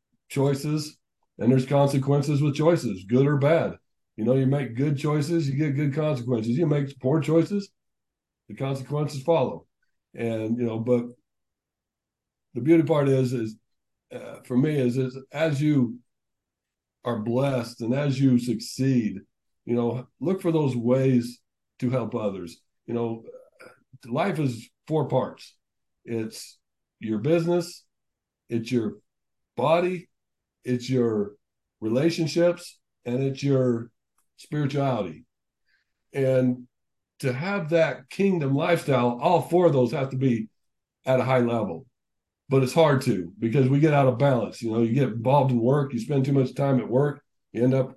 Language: English